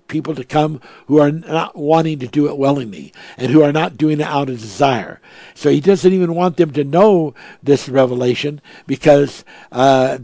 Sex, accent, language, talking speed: male, American, English, 190 wpm